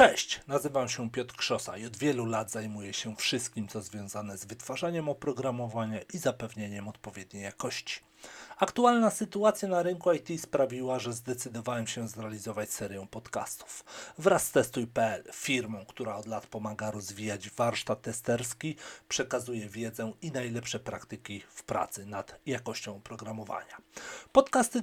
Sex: male